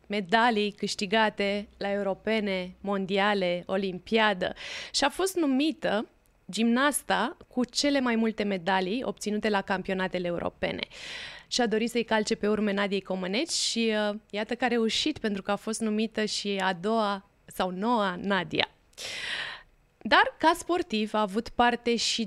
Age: 20-39